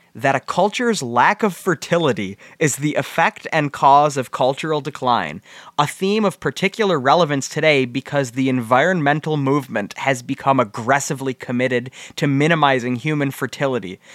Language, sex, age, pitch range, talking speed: English, male, 20-39, 125-170 Hz, 135 wpm